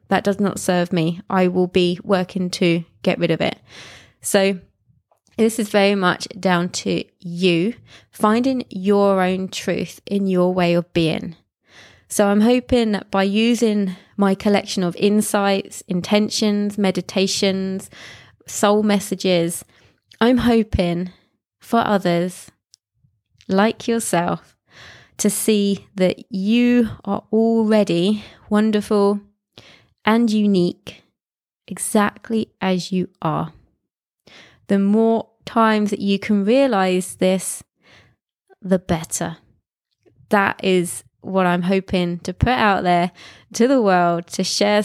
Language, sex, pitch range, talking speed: English, female, 180-215 Hz, 120 wpm